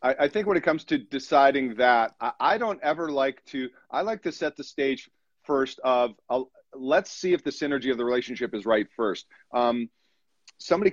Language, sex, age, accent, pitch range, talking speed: English, male, 40-59, American, 120-150 Hz, 190 wpm